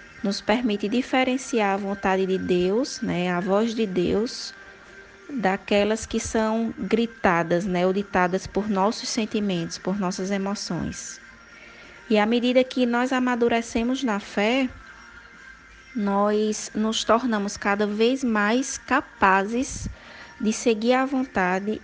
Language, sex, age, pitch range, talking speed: Portuguese, female, 20-39, 200-235 Hz, 120 wpm